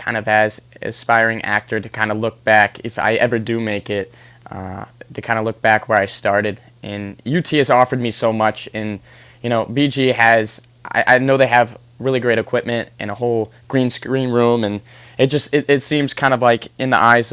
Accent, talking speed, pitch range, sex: American, 220 wpm, 110-125 Hz, male